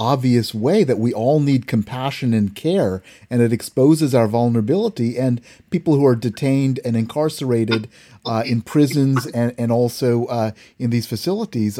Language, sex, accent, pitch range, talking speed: English, male, American, 110-130 Hz, 160 wpm